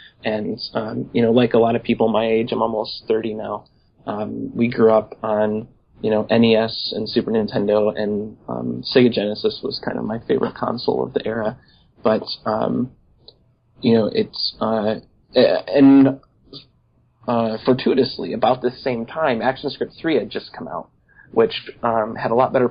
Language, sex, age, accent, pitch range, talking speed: English, male, 30-49, American, 110-130 Hz, 170 wpm